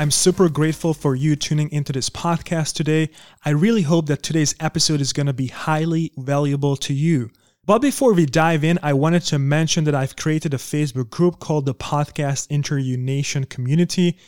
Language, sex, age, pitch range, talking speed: English, male, 30-49, 140-165 Hz, 190 wpm